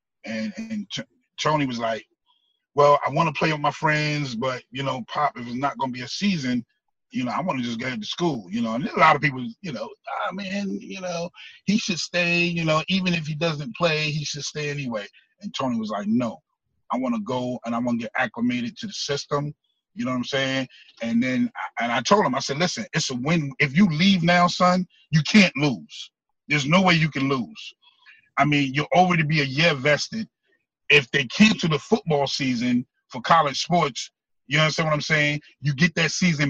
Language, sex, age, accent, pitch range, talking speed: English, male, 30-49, American, 135-180 Hz, 230 wpm